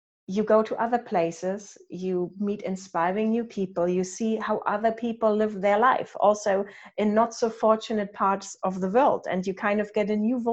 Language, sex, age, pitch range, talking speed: English, female, 30-49, 200-235 Hz, 195 wpm